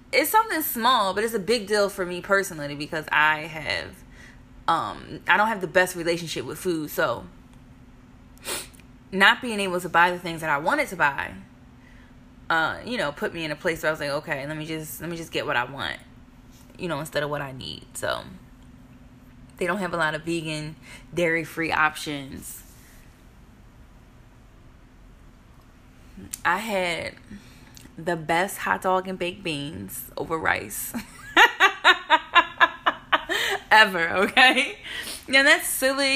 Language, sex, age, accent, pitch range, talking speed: English, female, 20-39, American, 155-210 Hz, 155 wpm